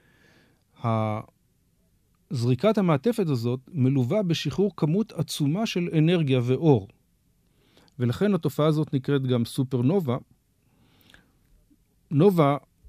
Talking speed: 80 wpm